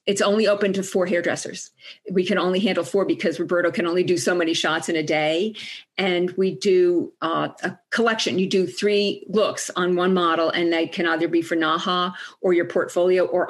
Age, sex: 50-69, female